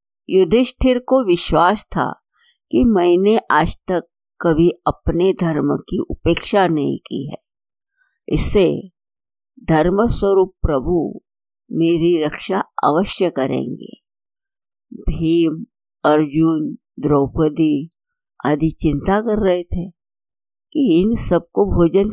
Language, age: Hindi, 60-79